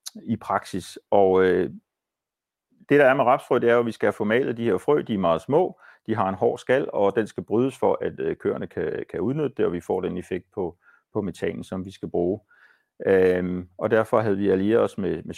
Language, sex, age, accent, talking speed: Danish, male, 40-59, native, 230 wpm